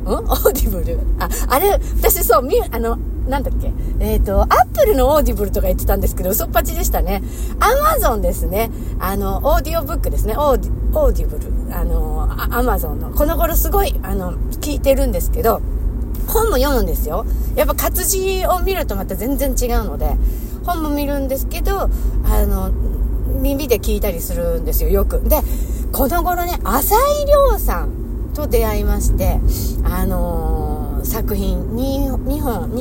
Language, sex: Japanese, female